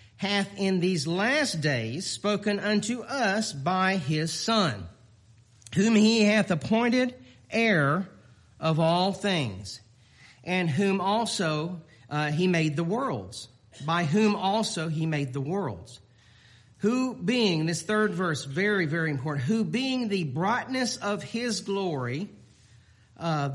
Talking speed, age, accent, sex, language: 125 wpm, 40-59, American, male, English